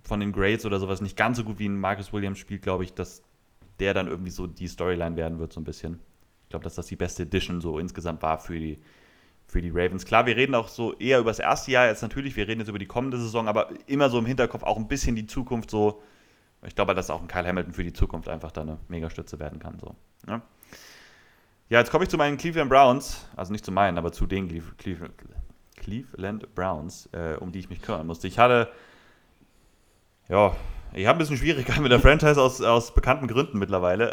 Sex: male